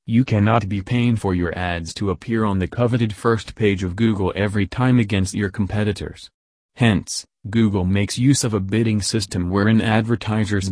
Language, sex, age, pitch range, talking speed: English, male, 30-49, 95-115 Hz, 175 wpm